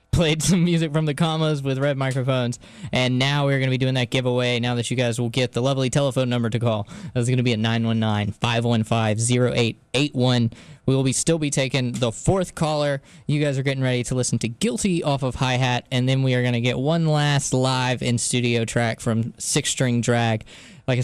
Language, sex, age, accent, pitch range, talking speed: English, male, 10-29, American, 120-150 Hz, 210 wpm